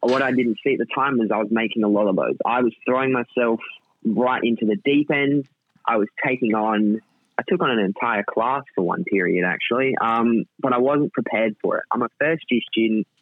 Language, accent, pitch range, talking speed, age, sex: English, Australian, 105-135 Hz, 225 wpm, 20-39, male